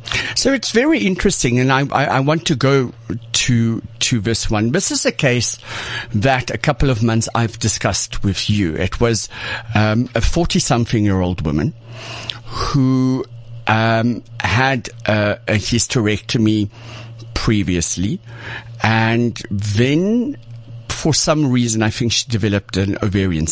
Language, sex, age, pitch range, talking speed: English, male, 60-79, 105-125 Hz, 140 wpm